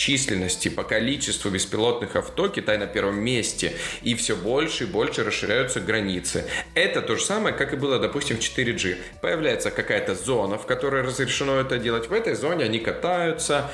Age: 20-39